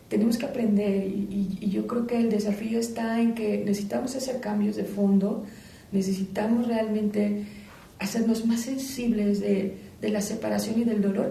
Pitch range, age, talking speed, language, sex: 195-225 Hz, 40-59, 165 wpm, Spanish, female